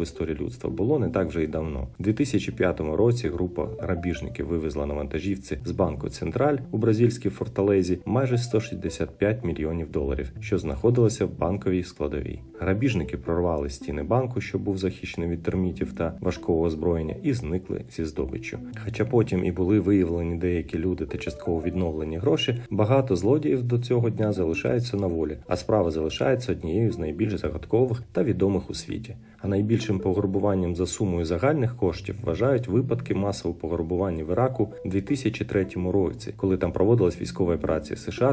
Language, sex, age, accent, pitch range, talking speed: Ukrainian, male, 40-59, native, 85-110 Hz, 160 wpm